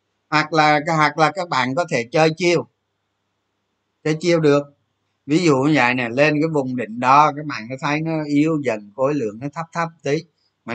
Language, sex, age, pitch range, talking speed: Vietnamese, male, 20-39, 130-170 Hz, 205 wpm